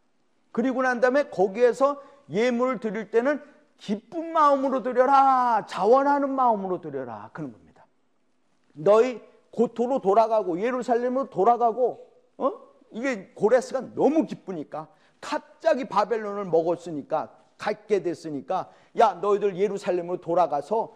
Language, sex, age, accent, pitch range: Korean, male, 40-59, native, 160-245 Hz